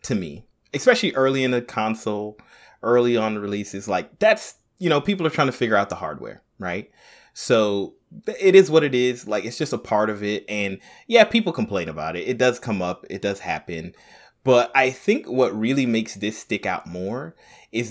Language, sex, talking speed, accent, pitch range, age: English, male, 200 wpm, American, 110-160 Hz, 30-49